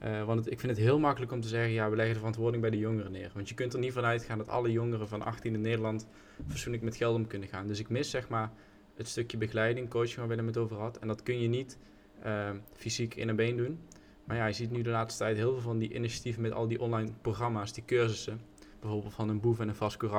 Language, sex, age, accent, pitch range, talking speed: Dutch, male, 20-39, Dutch, 105-120 Hz, 275 wpm